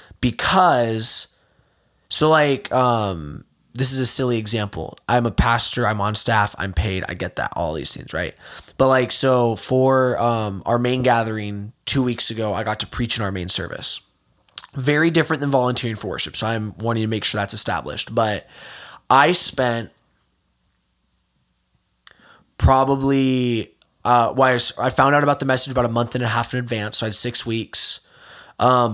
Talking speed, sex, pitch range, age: 170 wpm, male, 110-135 Hz, 20-39